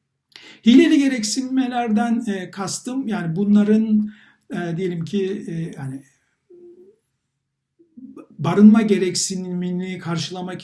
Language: Turkish